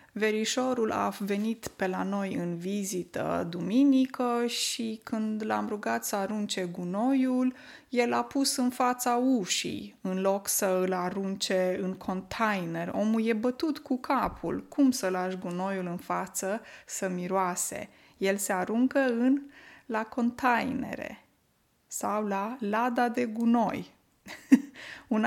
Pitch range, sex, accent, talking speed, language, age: 195-255 Hz, female, native, 130 wpm, Romanian, 20-39